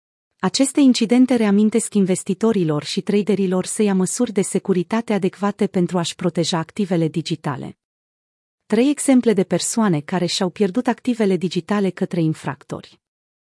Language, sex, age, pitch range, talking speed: Romanian, female, 30-49, 170-220 Hz, 125 wpm